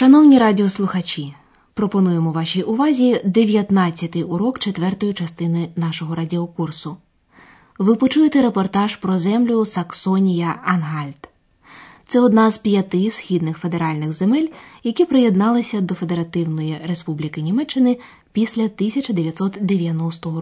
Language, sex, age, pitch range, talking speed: Ukrainian, female, 20-39, 165-220 Hz, 95 wpm